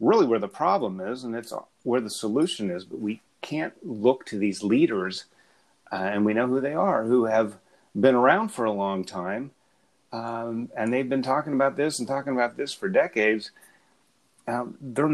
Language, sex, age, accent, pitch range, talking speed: English, male, 30-49, American, 105-140 Hz, 190 wpm